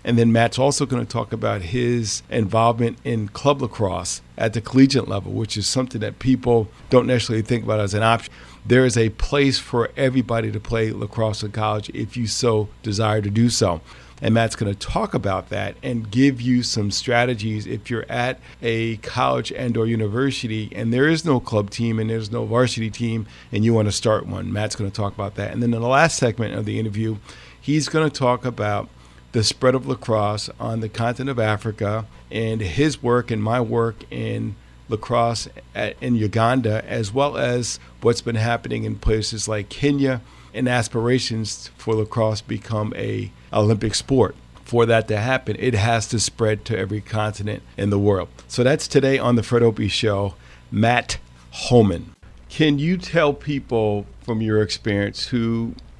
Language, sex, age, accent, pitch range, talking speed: English, male, 40-59, American, 105-120 Hz, 185 wpm